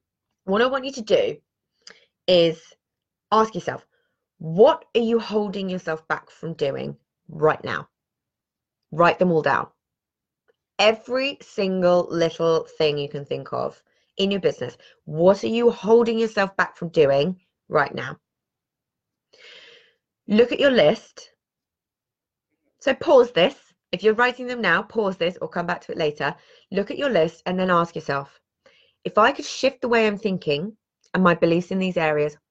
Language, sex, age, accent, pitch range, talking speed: English, female, 20-39, British, 160-230 Hz, 160 wpm